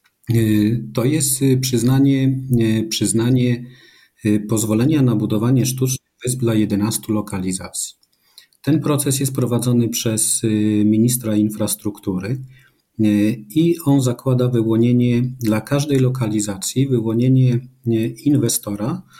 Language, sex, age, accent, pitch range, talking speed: Polish, male, 40-59, native, 105-125 Hz, 85 wpm